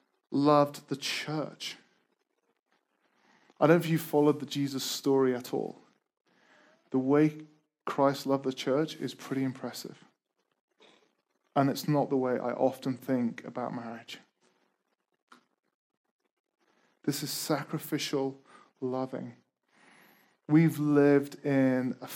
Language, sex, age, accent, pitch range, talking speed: English, male, 20-39, British, 135-150 Hz, 110 wpm